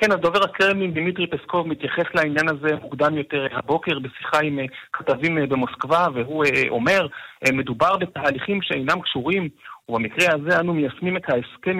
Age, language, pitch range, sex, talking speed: 40-59, Hebrew, 130-170 Hz, male, 135 wpm